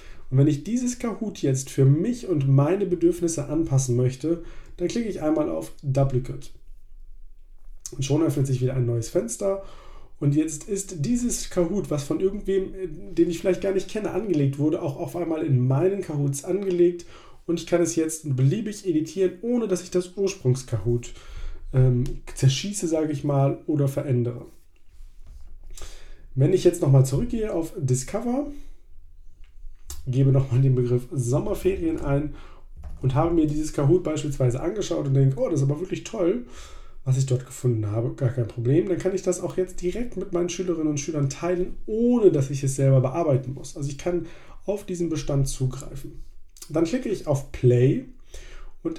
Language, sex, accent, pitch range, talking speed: German, male, German, 130-180 Hz, 170 wpm